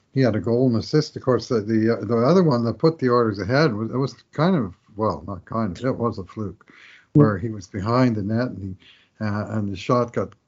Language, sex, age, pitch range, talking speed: English, male, 50-69, 105-125 Hz, 260 wpm